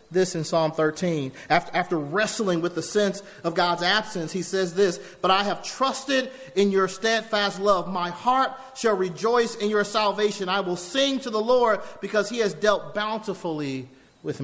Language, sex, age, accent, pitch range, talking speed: English, male, 40-59, American, 150-205 Hz, 180 wpm